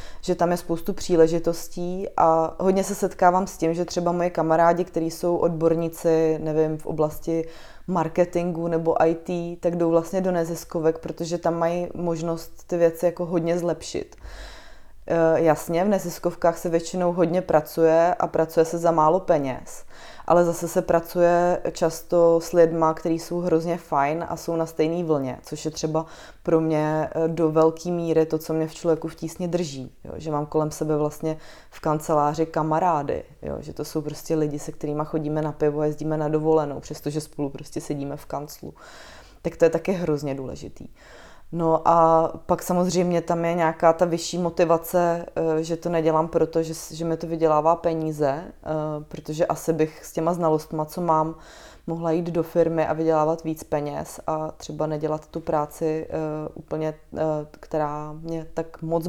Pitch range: 155-170 Hz